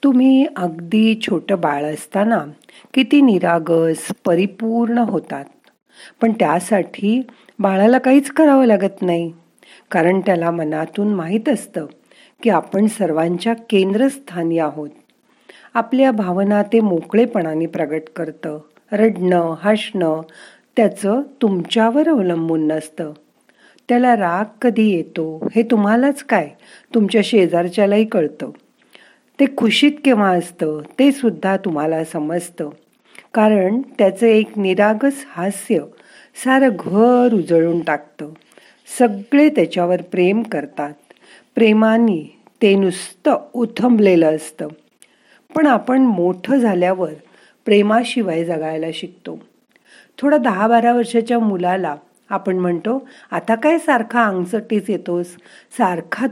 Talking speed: 100 wpm